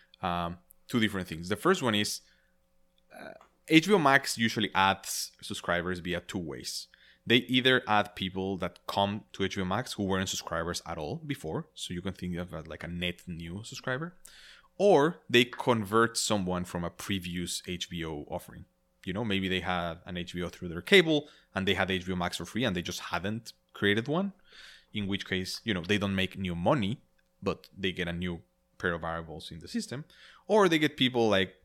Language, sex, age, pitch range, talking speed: English, male, 20-39, 90-110 Hz, 190 wpm